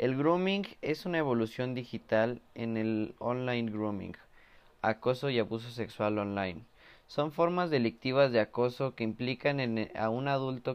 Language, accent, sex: Spanish, Mexican, male